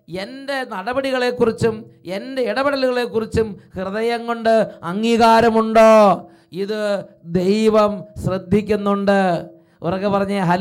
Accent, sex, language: Indian, male, English